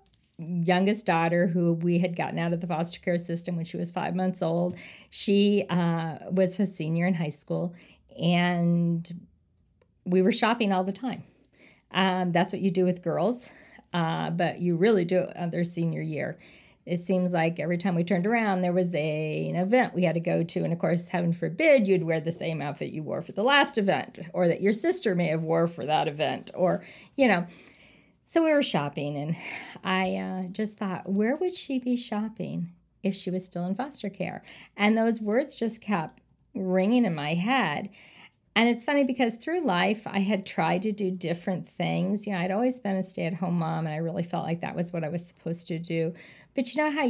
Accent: American